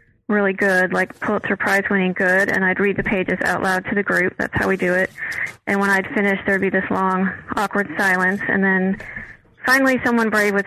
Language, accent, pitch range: English, American, 180-200 Hz